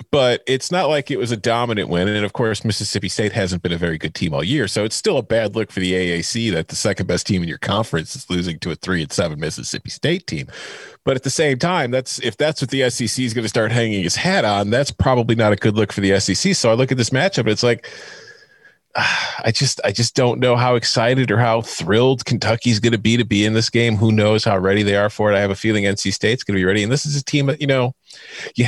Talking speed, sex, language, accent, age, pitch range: 275 wpm, male, English, American, 30-49, 110-140 Hz